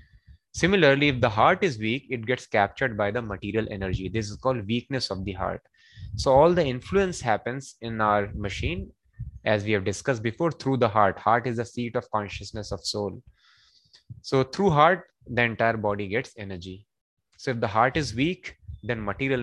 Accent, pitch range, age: Indian, 100-130 Hz, 20-39